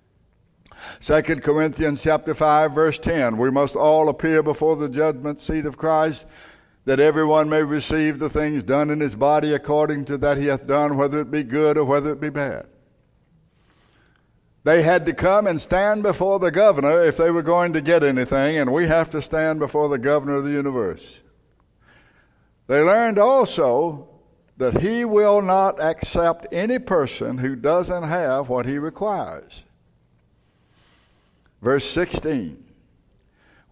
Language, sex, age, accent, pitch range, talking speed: English, male, 60-79, American, 115-155 Hz, 155 wpm